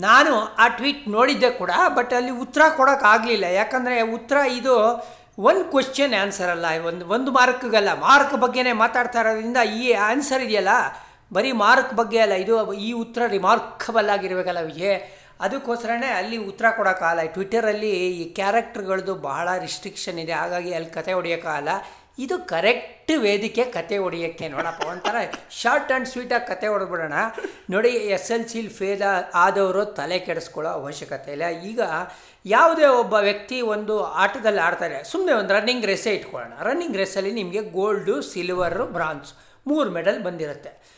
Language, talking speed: Kannada, 135 wpm